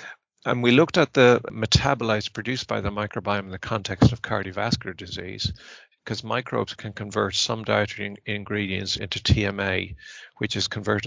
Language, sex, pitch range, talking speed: English, male, 100-120 Hz, 155 wpm